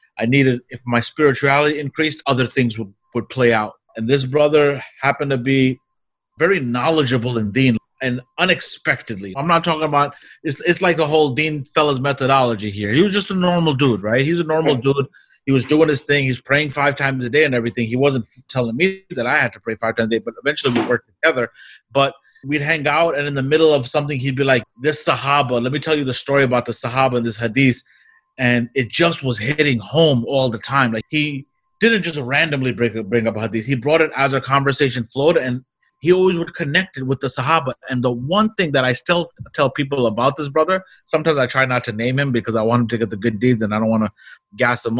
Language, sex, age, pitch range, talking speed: English, male, 30-49, 125-150 Hz, 235 wpm